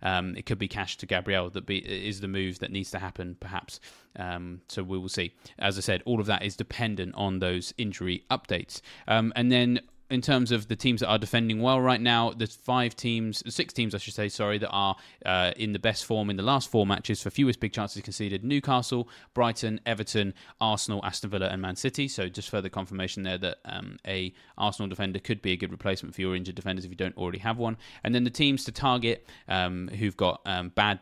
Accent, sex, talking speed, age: British, male, 230 wpm, 20-39